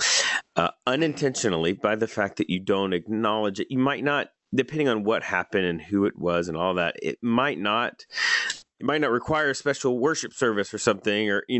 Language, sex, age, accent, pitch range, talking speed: English, male, 30-49, American, 95-120 Hz, 195 wpm